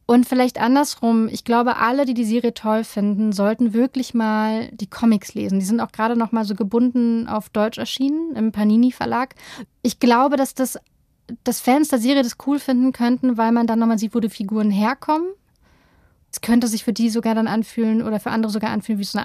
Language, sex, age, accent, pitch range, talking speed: German, female, 30-49, German, 210-240 Hz, 210 wpm